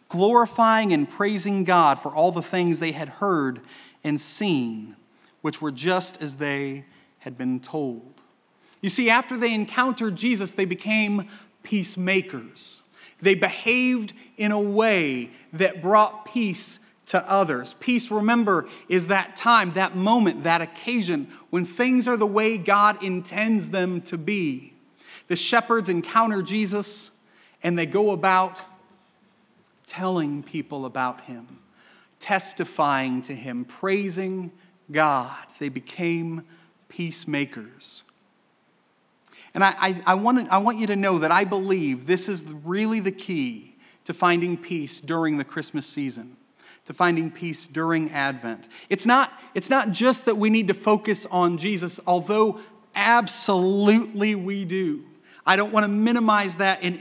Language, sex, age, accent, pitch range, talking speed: English, male, 30-49, American, 170-215 Hz, 140 wpm